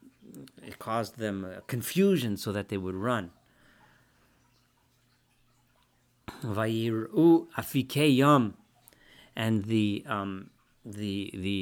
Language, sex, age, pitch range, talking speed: English, male, 50-69, 105-140 Hz, 75 wpm